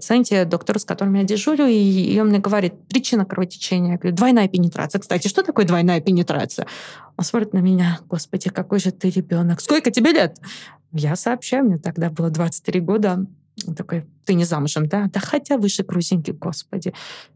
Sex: female